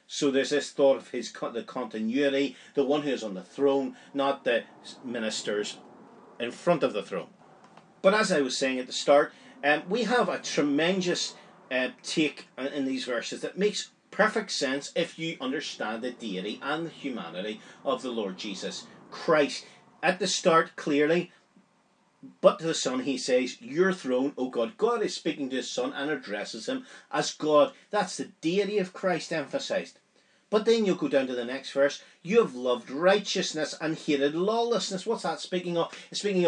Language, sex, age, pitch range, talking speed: English, male, 40-59, 140-190 Hz, 180 wpm